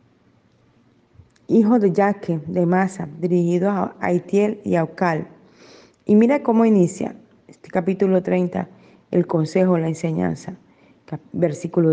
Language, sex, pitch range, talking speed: Spanish, female, 175-205 Hz, 120 wpm